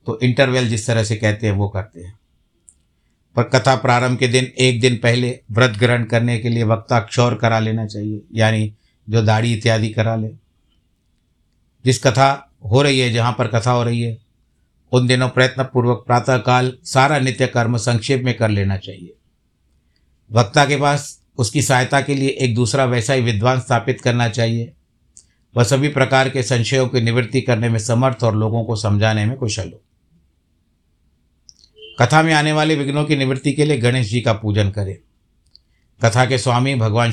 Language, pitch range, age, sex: Hindi, 110-130 Hz, 60-79, male